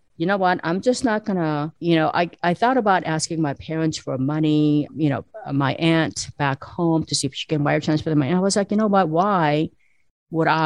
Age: 40-59